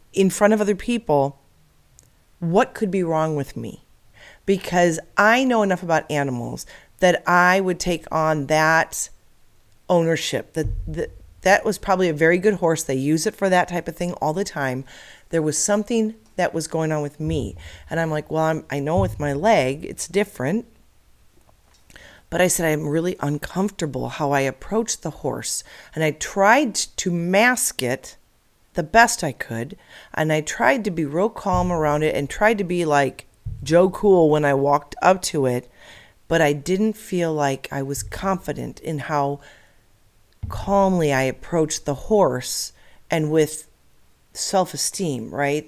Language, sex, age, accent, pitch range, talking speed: English, female, 40-59, American, 140-180 Hz, 165 wpm